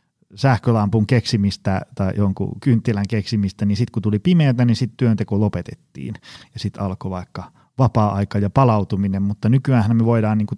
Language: Finnish